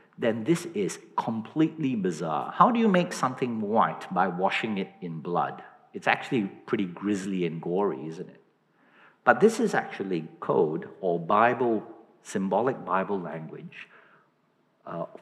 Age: 50-69